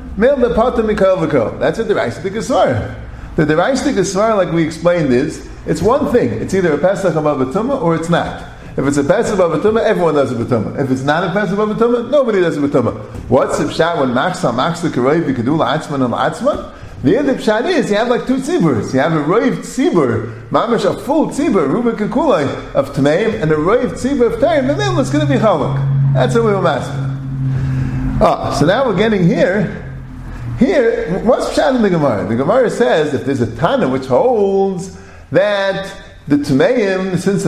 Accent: American